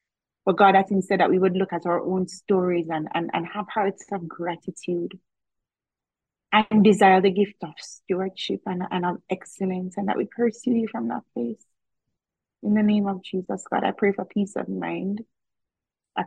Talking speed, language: 190 wpm, English